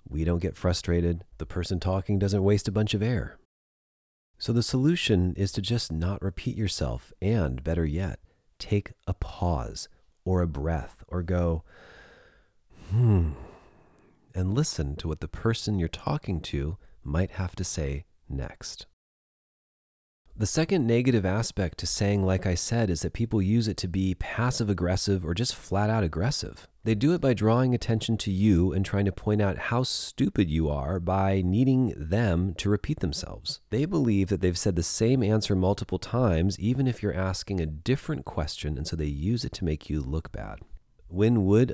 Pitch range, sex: 85-110 Hz, male